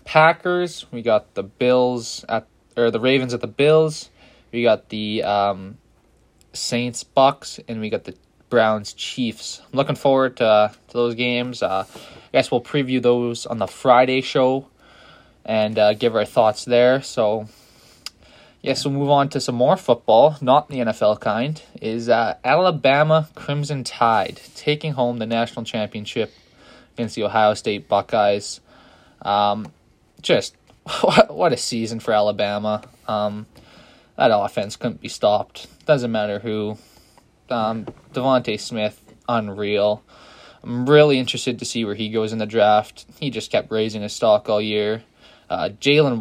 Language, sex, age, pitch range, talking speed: English, male, 20-39, 105-125 Hz, 145 wpm